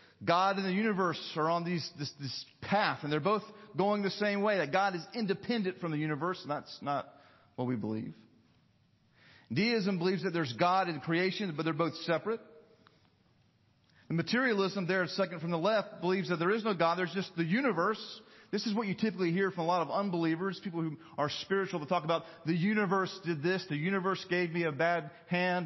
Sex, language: male, English